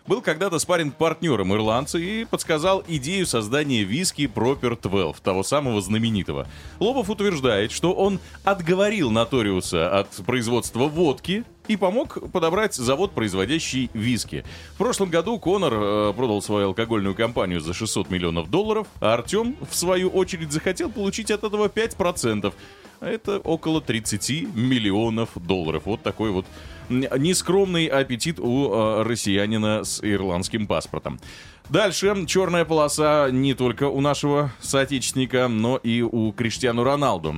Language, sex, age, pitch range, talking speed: Russian, male, 30-49, 100-160 Hz, 130 wpm